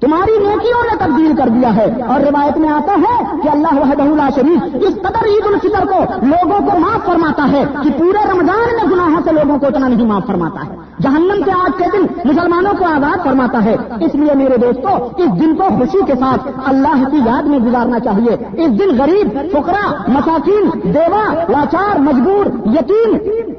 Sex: female